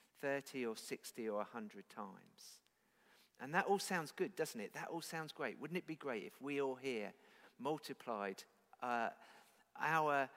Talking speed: 160 wpm